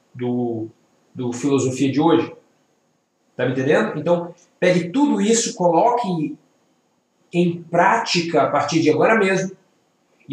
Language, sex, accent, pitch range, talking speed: Portuguese, male, Brazilian, 145-180 Hz, 130 wpm